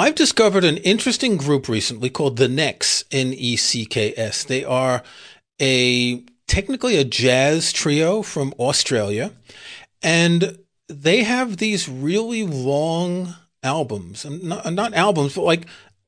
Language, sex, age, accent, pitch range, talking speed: English, male, 40-59, American, 130-180 Hz, 120 wpm